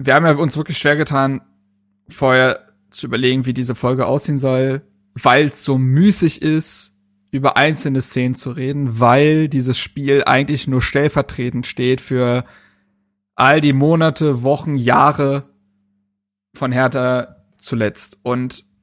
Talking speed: 135 wpm